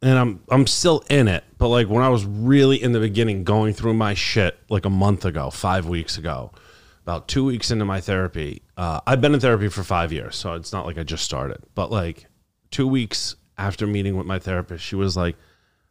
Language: English